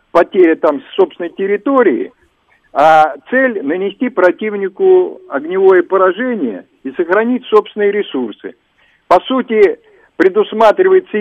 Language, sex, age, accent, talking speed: Russian, male, 50-69, native, 90 wpm